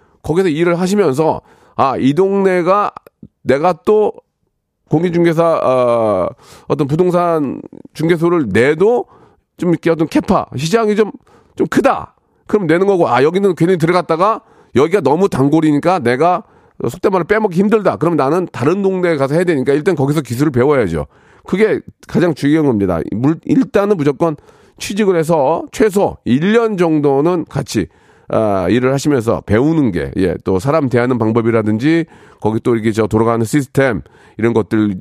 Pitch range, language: 115-175 Hz, Korean